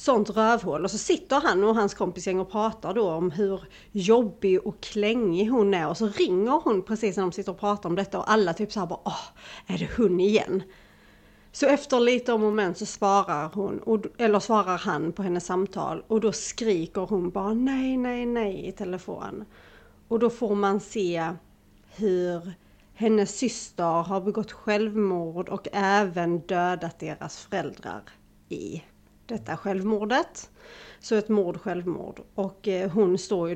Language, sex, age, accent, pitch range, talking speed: Swedish, female, 30-49, native, 185-220 Hz, 165 wpm